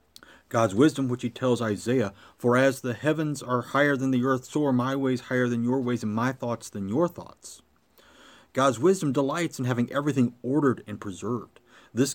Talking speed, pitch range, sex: 195 wpm, 115-145 Hz, male